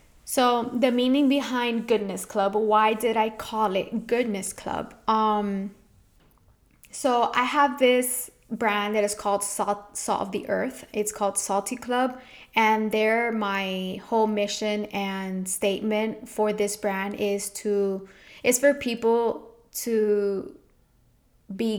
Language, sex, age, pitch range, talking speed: English, female, 10-29, 200-225 Hz, 130 wpm